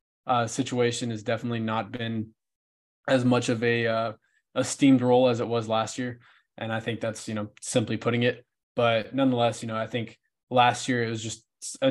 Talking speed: 195 wpm